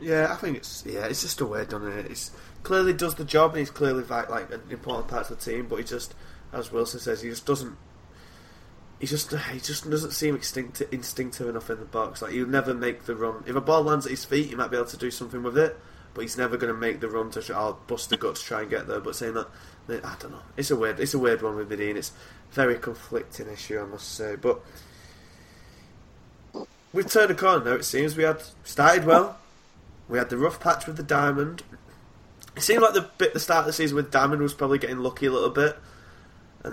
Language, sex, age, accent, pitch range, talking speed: English, male, 20-39, British, 110-145 Hz, 245 wpm